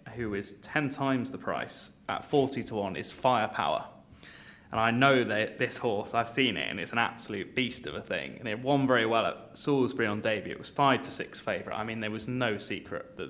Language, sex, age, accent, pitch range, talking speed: English, male, 20-39, British, 105-125 Hz, 230 wpm